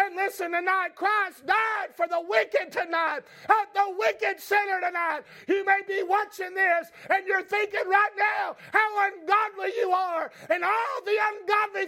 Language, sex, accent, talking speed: English, male, American, 160 wpm